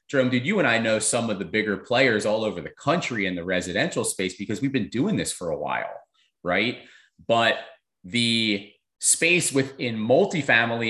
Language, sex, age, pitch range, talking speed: English, male, 30-49, 100-140 Hz, 180 wpm